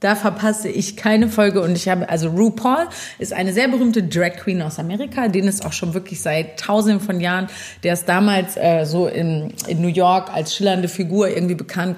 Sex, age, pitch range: female, 30-49, 170-205 Hz